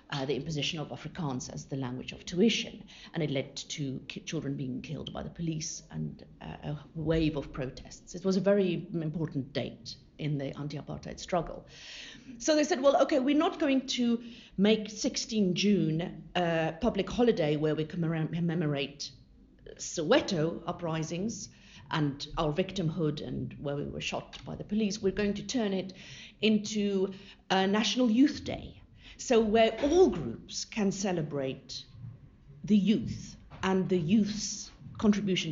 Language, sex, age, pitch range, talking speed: English, female, 50-69, 145-205 Hz, 150 wpm